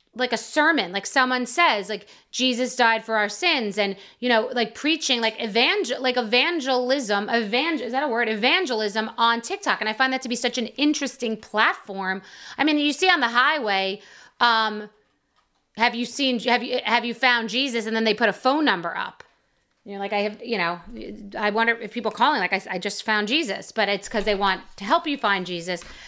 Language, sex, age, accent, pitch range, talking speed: English, female, 30-49, American, 220-290 Hz, 210 wpm